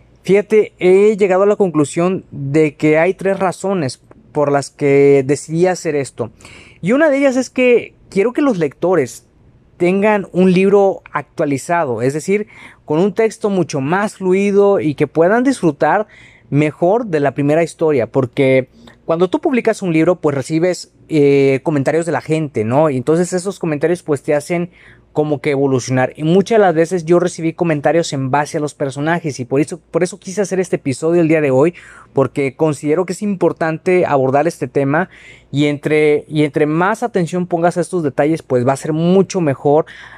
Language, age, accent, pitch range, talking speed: Spanish, 30-49, Mexican, 140-180 Hz, 180 wpm